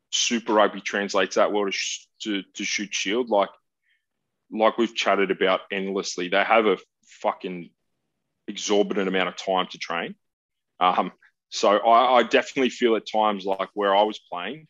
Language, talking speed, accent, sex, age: English, 165 wpm, Australian, male, 20-39